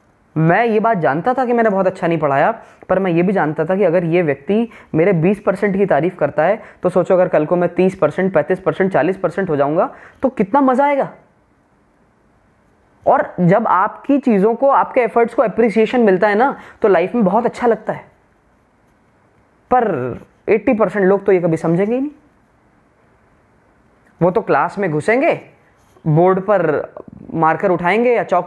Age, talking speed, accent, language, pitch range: 20-39, 180 wpm, native, Hindi, 175-240 Hz